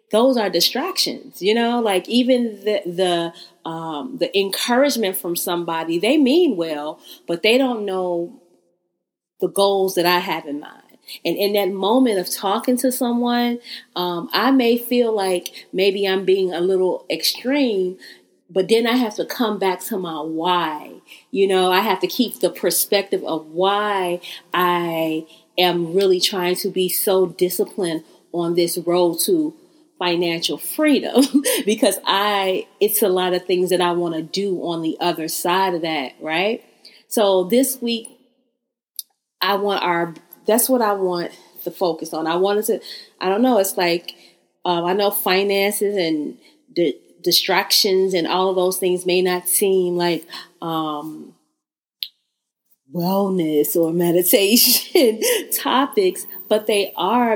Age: 30-49